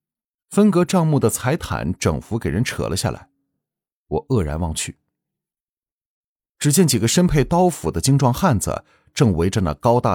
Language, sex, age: Chinese, male, 30-49